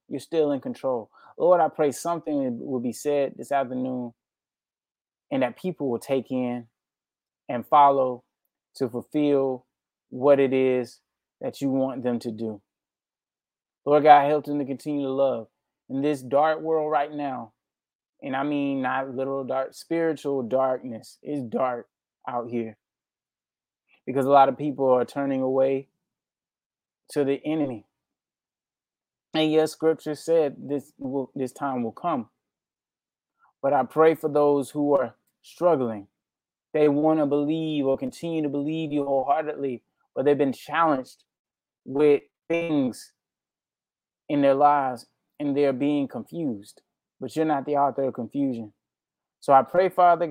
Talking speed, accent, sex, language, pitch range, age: 145 wpm, American, male, English, 130-150 Hz, 20-39